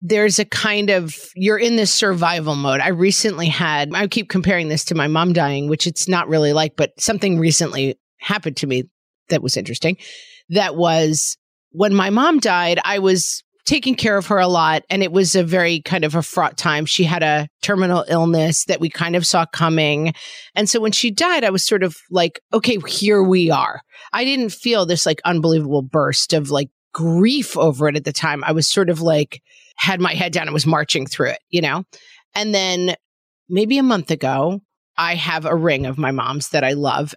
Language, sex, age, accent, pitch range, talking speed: English, female, 40-59, American, 155-200 Hz, 210 wpm